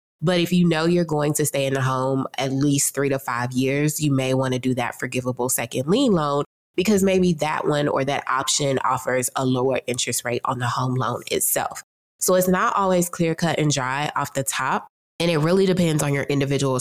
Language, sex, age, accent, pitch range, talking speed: English, female, 20-39, American, 130-165 Hz, 220 wpm